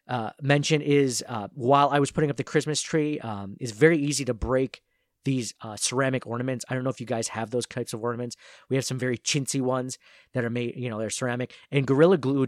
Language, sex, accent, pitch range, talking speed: English, male, American, 120-150 Hz, 235 wpm